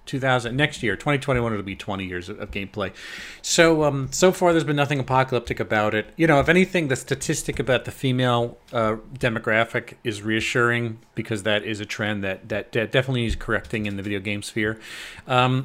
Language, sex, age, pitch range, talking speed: English, male, 40-59, 105-145 Hz, 190 wpm